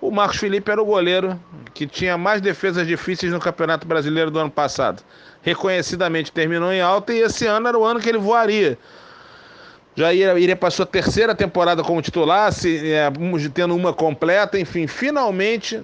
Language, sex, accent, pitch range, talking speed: Portuguese, male, Brazilian, 160-195 Hz, 175 wpm